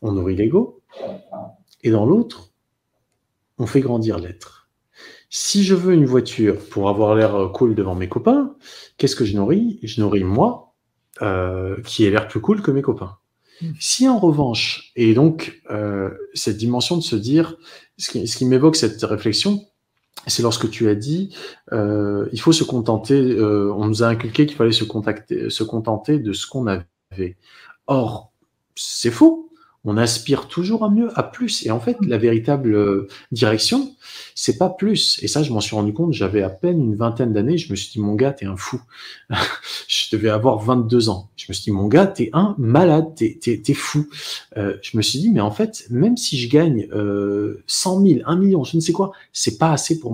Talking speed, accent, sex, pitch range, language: 195 wpm, French, male, 105-160 Hz, French